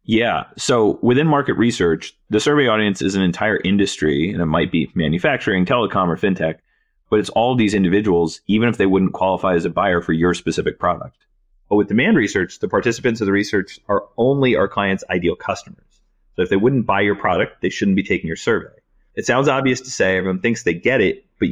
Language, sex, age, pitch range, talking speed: English, male, 30-49, 95-130 Hz, 210 wpm